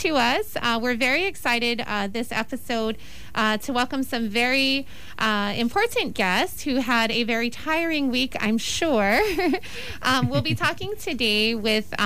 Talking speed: 155 wpm